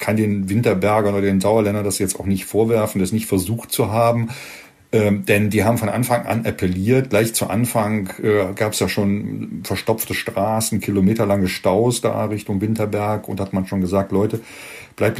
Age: 40-59